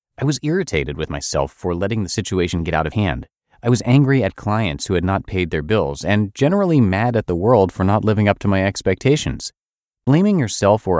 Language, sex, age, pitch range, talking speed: English, male, 30-49, 85-115 Hz, 220 wpm